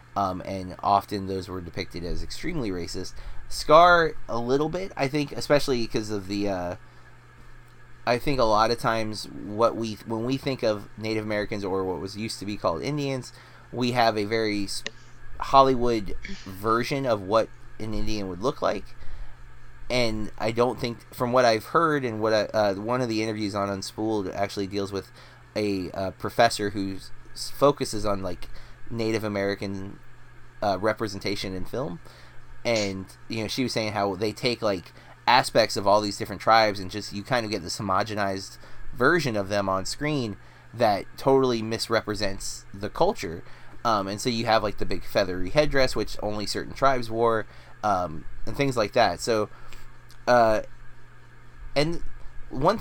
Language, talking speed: English, 165 wpm